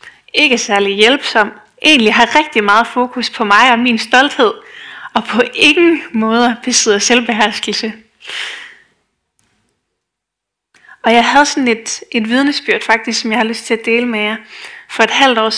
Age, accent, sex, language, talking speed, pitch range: 20-39, native, female, Danish, 155 wpm, 215-270 Hz